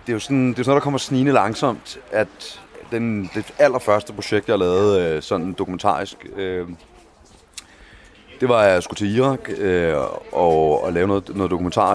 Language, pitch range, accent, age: Danish, 80-100 Hz, native, 30-49